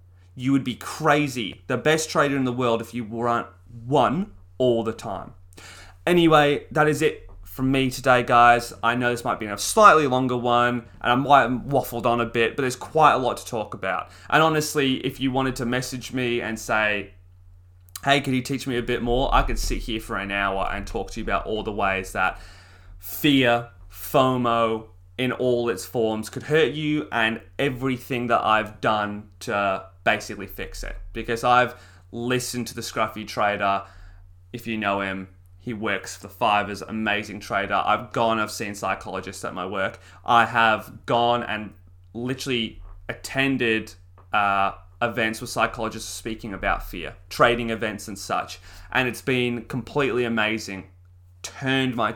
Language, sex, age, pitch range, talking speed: English, male, 20-39, 100-125 Hz, 175 wpm